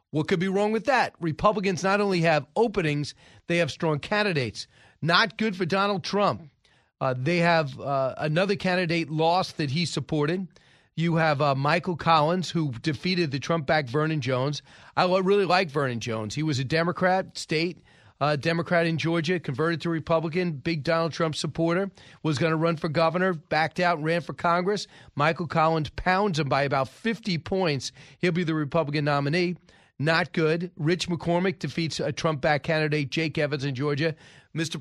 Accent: American